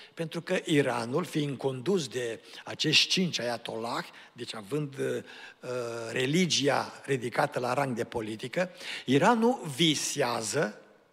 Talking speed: 110 wpm